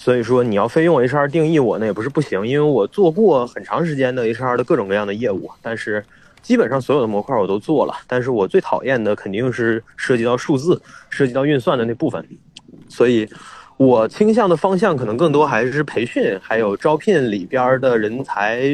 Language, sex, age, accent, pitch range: Chinese, male, 20-39, native, 125-170 Hz